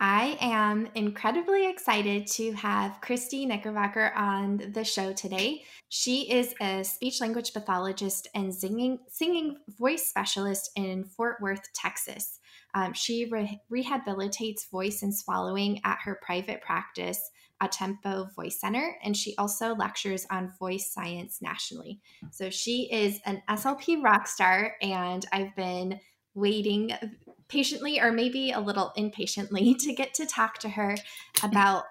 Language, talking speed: English, 140 wpm